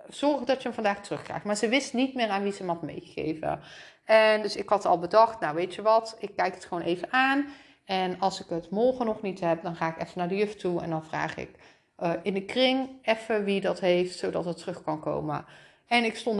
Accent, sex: Dutch, female